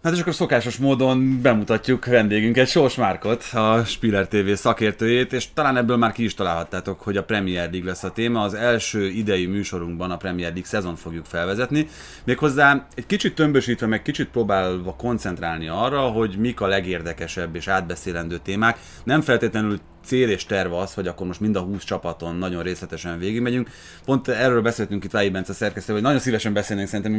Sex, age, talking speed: male, 30-49, 180 wpm